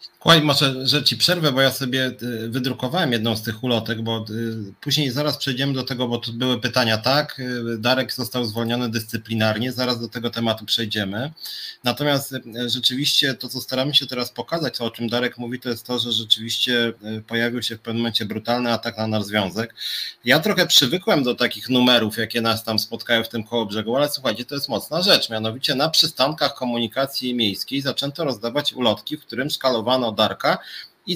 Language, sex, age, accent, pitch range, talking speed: Polish, male, 30-49, native, 115-140 Hz, 180 wpm